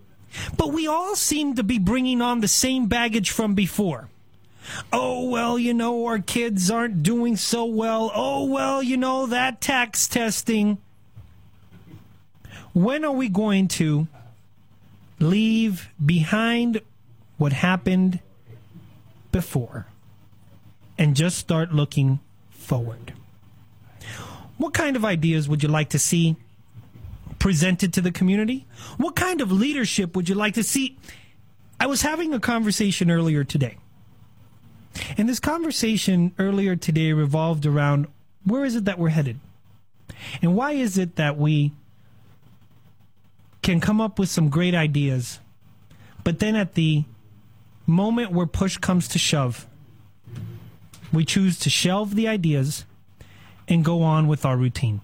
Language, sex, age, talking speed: English, male, 30-49, 135 wpm